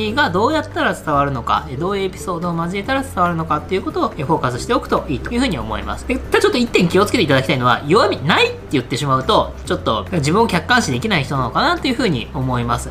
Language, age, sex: Japanese, 20-39, female